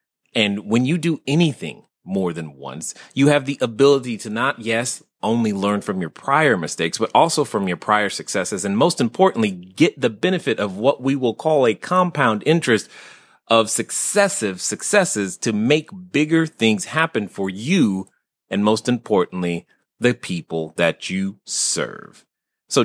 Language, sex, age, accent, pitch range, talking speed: English, male, 30-49, American, 105-165 Hz, 160 wpm